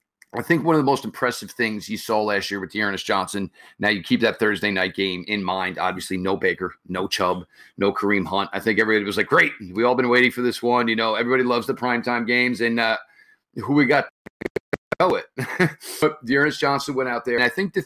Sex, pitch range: male, 110-130 Hz